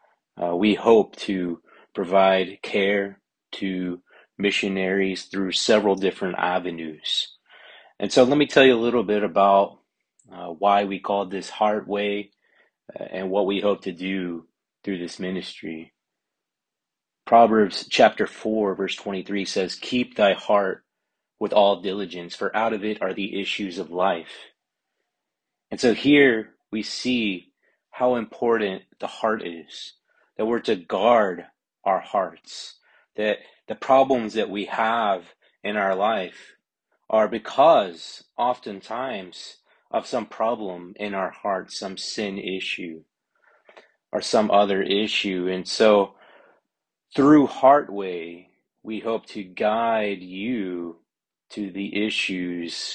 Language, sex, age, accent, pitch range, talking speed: English, male, 30-49, American, 90-105 Hz, 125 wpm